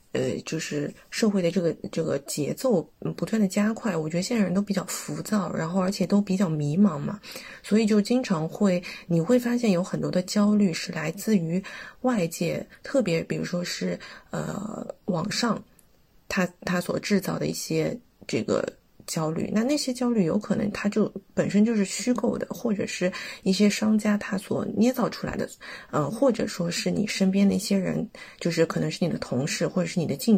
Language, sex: Chinese, female